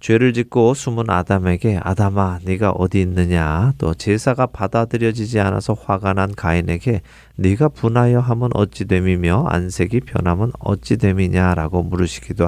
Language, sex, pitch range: Korean, male, 95-125 Hz